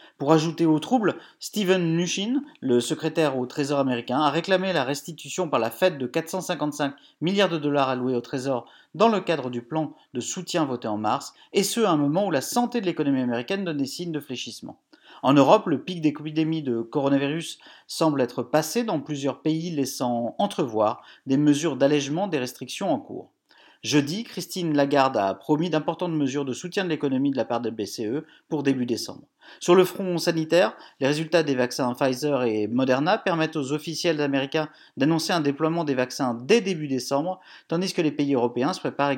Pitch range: 135-180 Hz